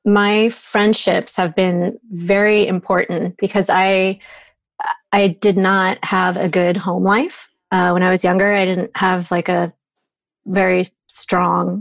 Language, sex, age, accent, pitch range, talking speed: English, female, 30-49, American, 185-205 Hz, 140 wpm